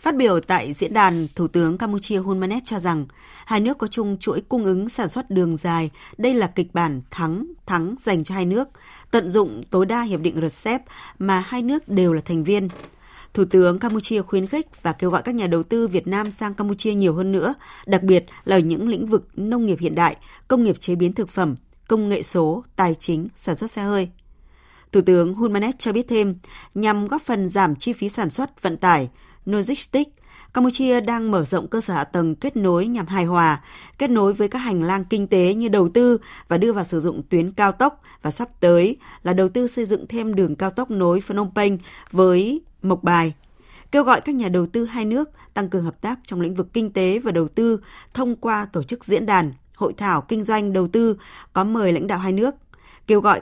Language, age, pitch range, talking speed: Vietnamese, 20-39, 175-225 Hz, 225 wpm